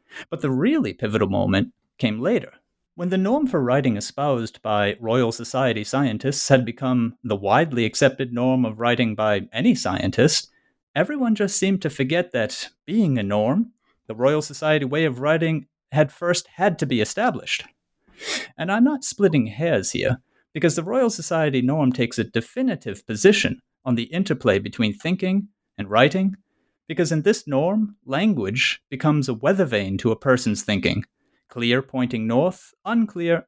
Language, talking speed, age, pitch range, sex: English, 160 wpm, 30-49, 125-180 Hz, male